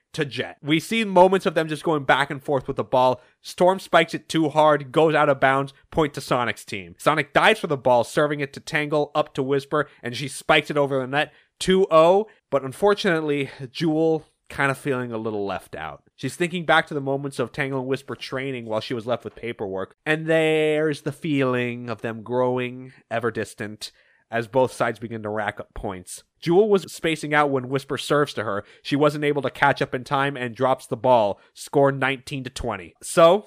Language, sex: English, male